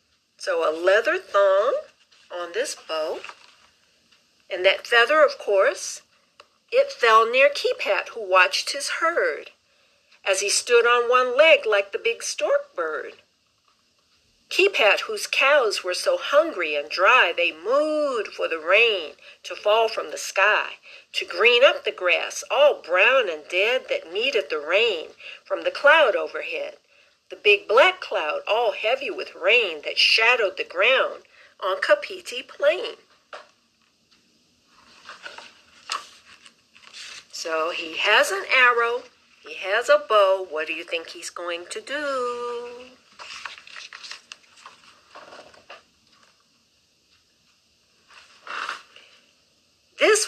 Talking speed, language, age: 120 wpm, English, 50-69